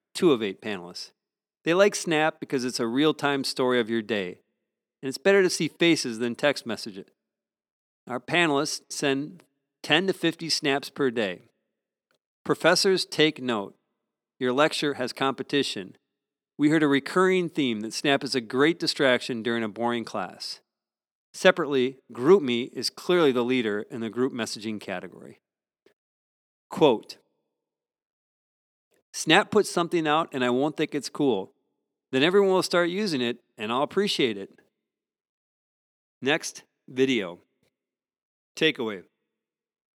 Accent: American